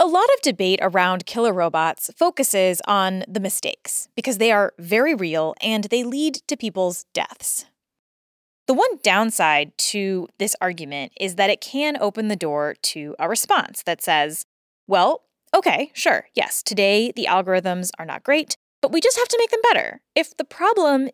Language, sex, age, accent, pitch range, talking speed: English, female, 20-39, American, 185-275 Hz, 175 wpm